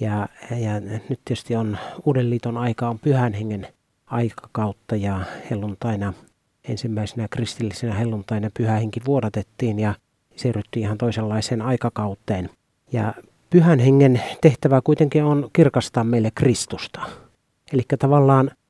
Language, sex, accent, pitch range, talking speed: Finnish, male, native, 110-135 Hz, 110 wpm